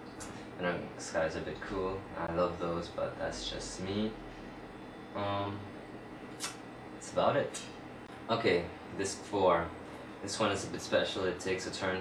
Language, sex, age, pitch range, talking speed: English, male, 20-39, 90-100 Hz, 145 wpm